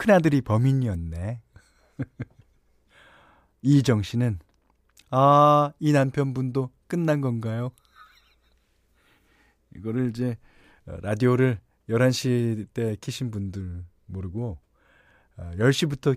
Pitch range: 100-150 Hz